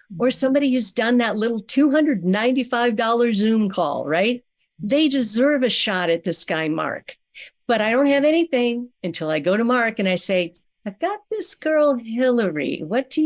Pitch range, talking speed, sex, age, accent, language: 175-240 Hz, 170 wpm, female, 50-69, American, English